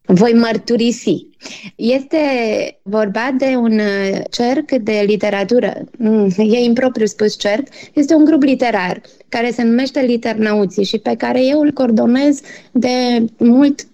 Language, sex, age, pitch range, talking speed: Romanian, female, 20-39, 205-260 Hz, 125 wpm